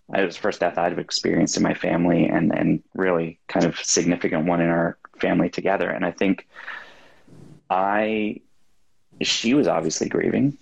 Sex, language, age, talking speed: male, English, 20-39, 165 wpm